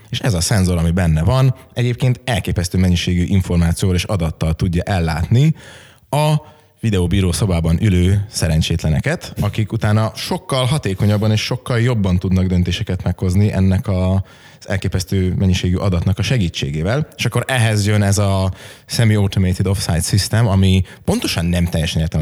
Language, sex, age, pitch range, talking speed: Hungarian, male, 20-39, 90-115 Hz, 140 wpm